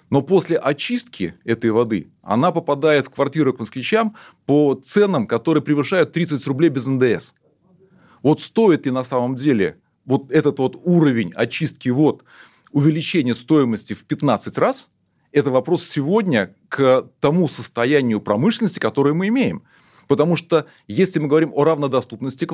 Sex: male